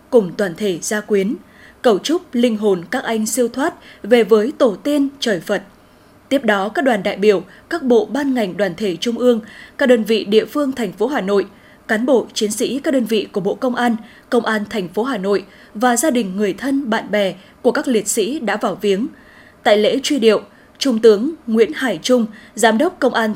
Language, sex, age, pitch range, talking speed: Vietnamese, female, 10-29, 215-275 Hz, 220 wpm